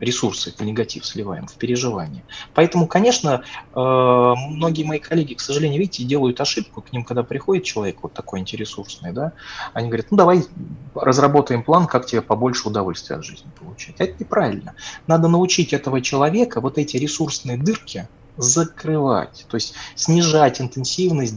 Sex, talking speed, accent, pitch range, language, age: male, 145 wpm, native, 120-170 Hz, Russian, 20-39